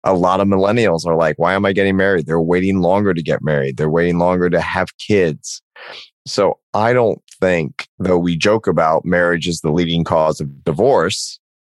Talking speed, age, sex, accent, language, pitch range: 195 wpm, 30-49, male, American, English, 80-100 Hz